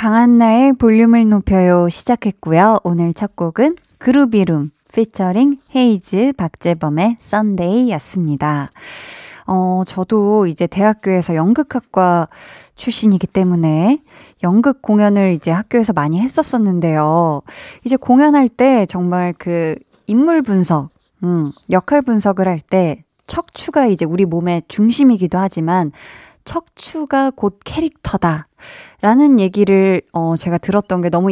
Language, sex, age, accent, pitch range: Korean, female, 20-39, native, 175-235 Hz